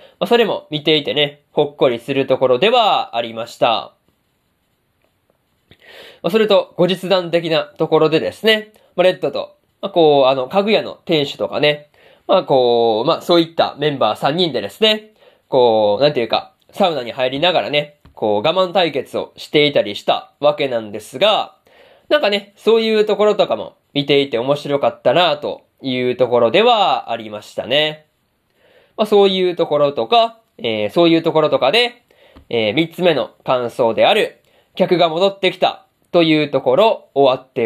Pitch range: 140-200 Hz